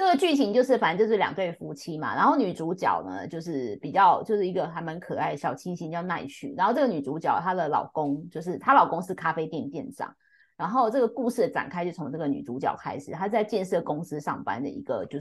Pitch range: 160-245 Hz